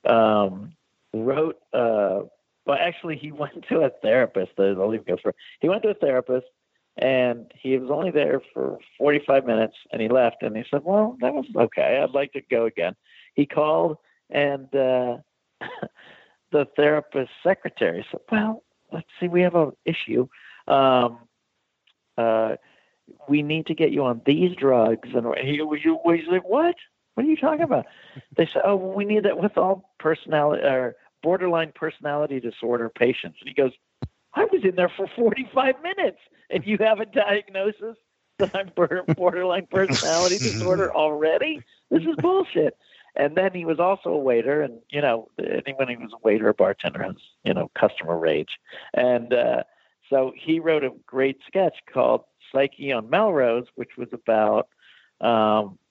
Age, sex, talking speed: 50-69, male, 165 wpm